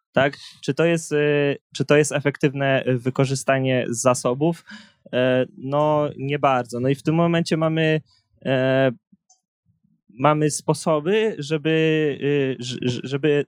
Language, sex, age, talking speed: Polish, male, 20-39, 100 wpm